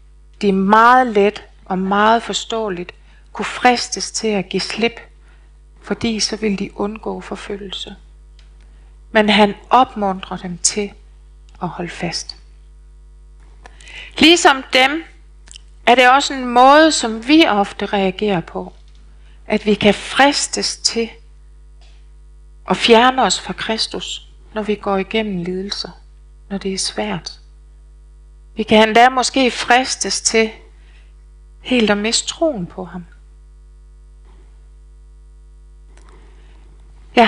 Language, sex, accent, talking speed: Danish, female, native, 115 wpm